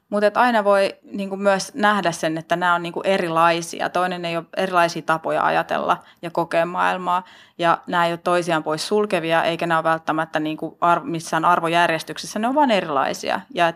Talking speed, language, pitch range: 170 wpm, Finnish, 160-185 Hz